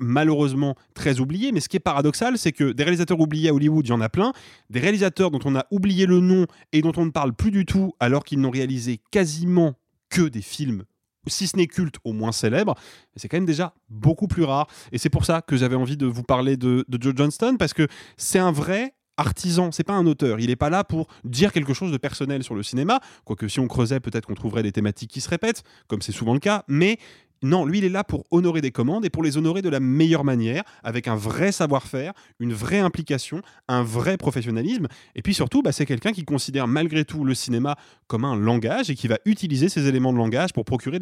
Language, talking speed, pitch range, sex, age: French, 245 wpm, 125-165 Hz, male, 30-49